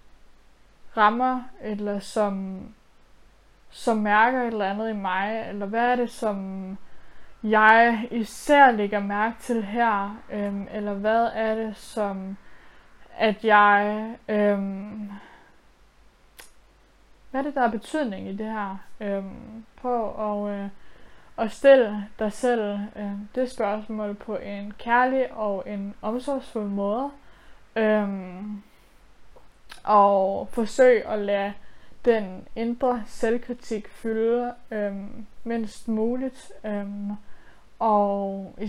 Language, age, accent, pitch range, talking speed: Danish, 20-39, native, 205-230 Hz, 115 wpm